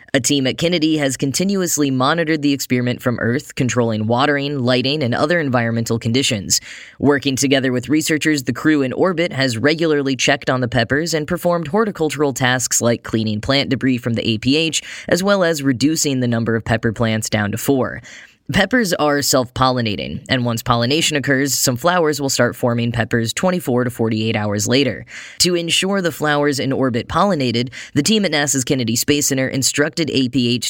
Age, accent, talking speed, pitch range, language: 10-29, American, 175 wpm, 120-150 Hz, English